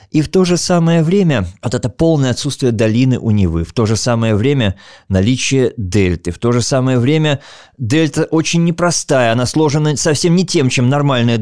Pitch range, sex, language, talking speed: 110-155 Hz, male, Russian, 185 wpm